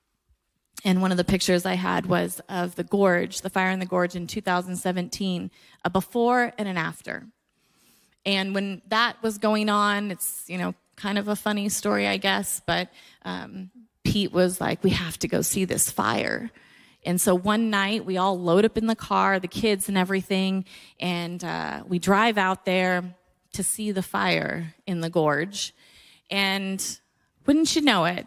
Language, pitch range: English, 180-225 Hz